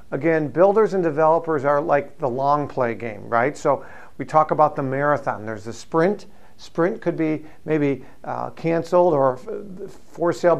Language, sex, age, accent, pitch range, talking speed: English, male, 50-69, American, 135-165 Hz, 175 wpm